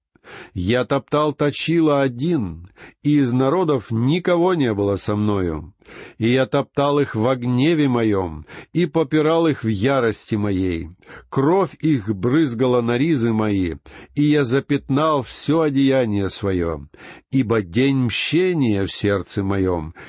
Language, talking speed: Russian, 130 wpm